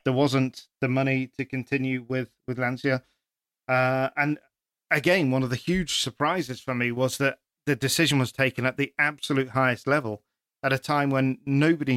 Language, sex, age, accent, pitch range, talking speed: English, male, 40-59, British, 125-140 Hz, 175 wpm